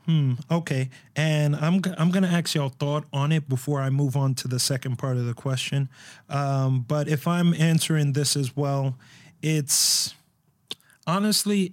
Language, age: English, 30-49